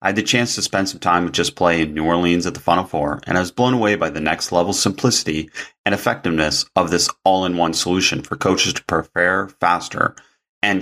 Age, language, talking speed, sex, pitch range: 30-49, English, 220 wpm, male, 90-115 Hz